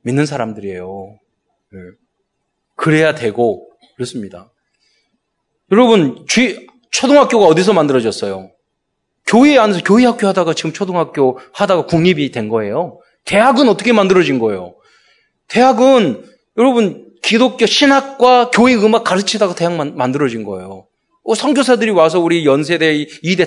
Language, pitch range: Korean, 145-230 Hz